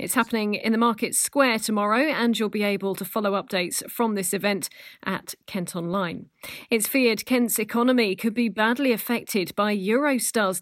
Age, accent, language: 40-59, British, English